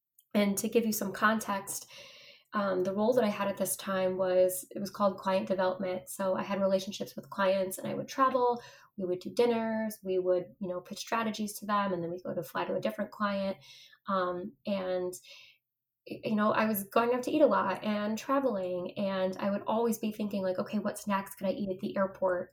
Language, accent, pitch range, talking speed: English, American, 185-210 Hz, 220 wpm